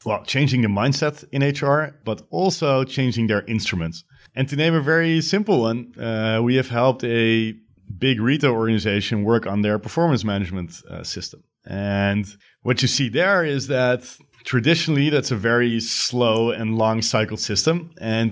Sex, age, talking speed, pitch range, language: male, 30-49, 165 wpm, 105-135 Hz, English